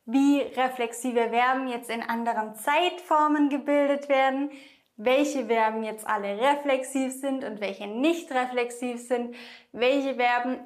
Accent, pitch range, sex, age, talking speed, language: German, 235-285 Hz, female, 20-39, 125 wpm, English